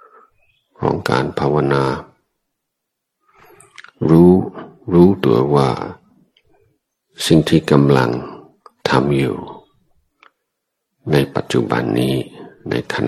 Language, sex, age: Thai, male, 60-79